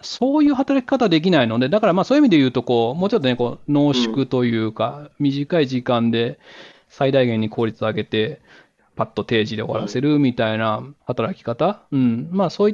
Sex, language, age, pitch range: male, Japanese, 20-39, 120-170 Hz